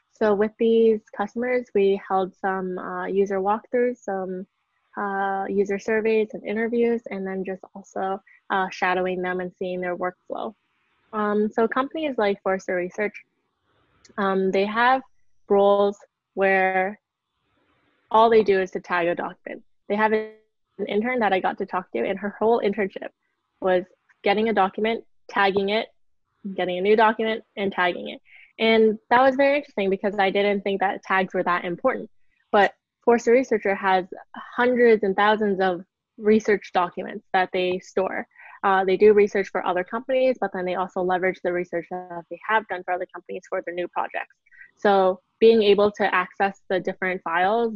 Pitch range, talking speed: 185-220 Hz, 165 wpm